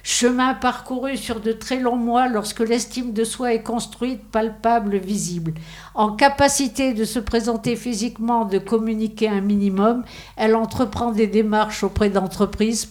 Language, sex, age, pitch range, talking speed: French, female, 50-69, 185-230 Hz, 145 wpm